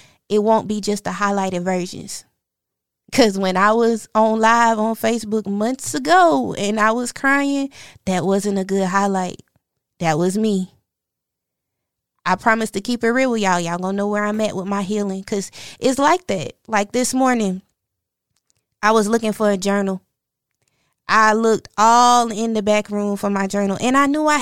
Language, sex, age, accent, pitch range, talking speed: English, female, 20-39, American, 195-235 Hz, 180 wpm